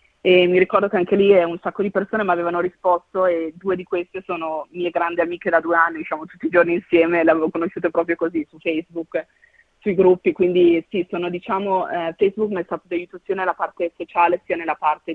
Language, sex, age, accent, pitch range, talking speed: Italian, female, 30-49, native, 165-185 Hz, 220 wpm